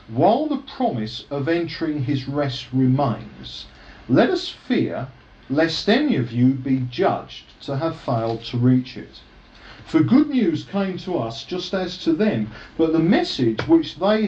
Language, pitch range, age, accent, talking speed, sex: English, 120-175 Hz, 50-69, British, 160 wpm, male